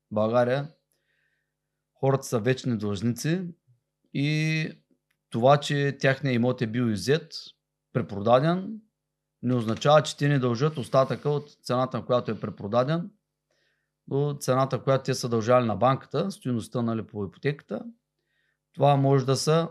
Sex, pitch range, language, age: male, 120-160 Hz, Bulgarian, 30-49